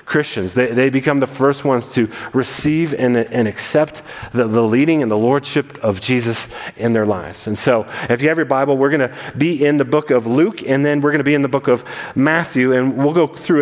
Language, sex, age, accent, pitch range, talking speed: English, male, 40-59, American, 125-165 Hz, 240 wpm